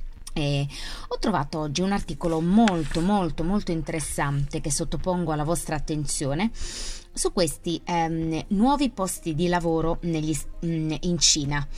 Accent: native